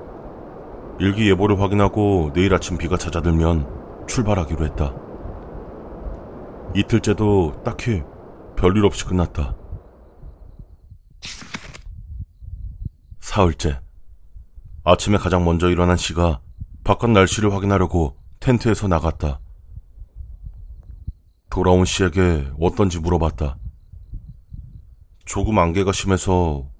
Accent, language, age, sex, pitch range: native, Korean, 30-49, male, 80-100 Hz